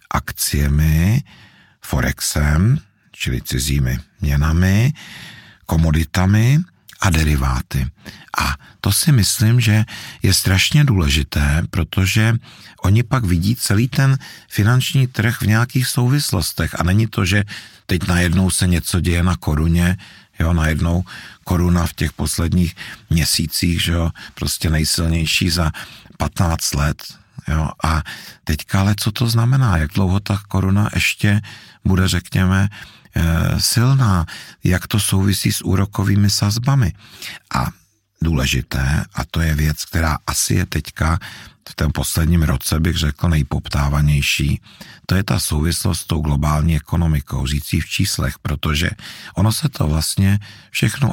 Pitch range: 80-105 Hz